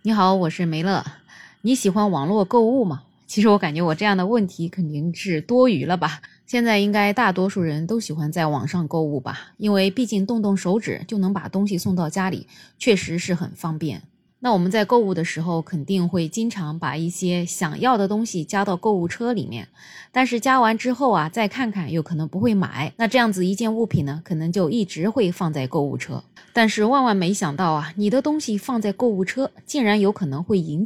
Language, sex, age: Chinese, female, 20-39